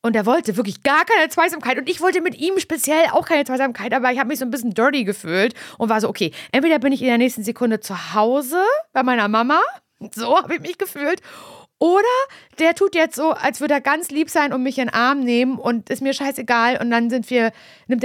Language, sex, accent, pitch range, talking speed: German, female, German, 200-275 Hz, 240 wpm